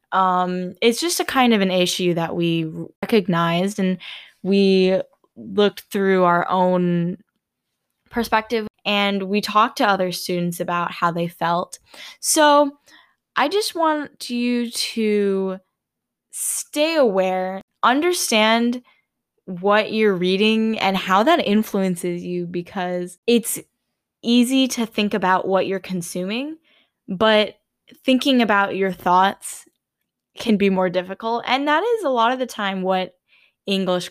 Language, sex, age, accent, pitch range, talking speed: English, female, 10-29, American, 180-230 Hz, 130 wpm